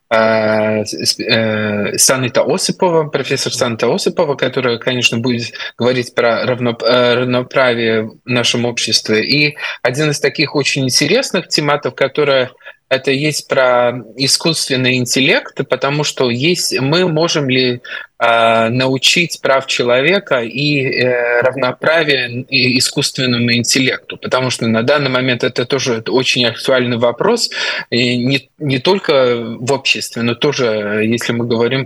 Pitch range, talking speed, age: 120-145 Hz, 120 wpm, 20-39